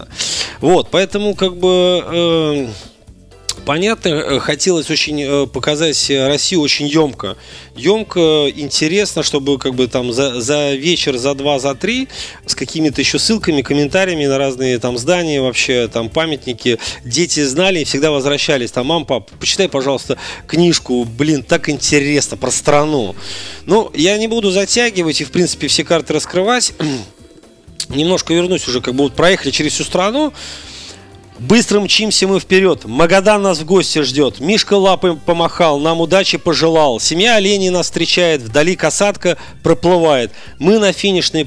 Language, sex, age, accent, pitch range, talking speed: Russian, male, 30-49, native, 140-180 Hz, 145 wpm